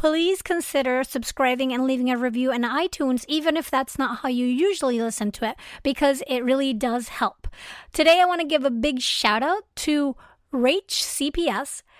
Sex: female